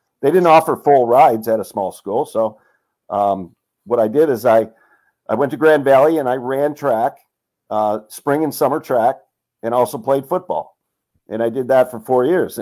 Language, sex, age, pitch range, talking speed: English, male, 50-69, 115-145 Hz, 195 wpm